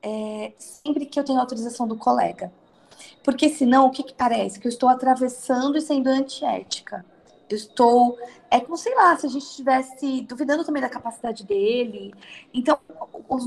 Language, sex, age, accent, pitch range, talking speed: Portuguese, female, 20-39, Brazilian, 235-295 Hz, 175 wpm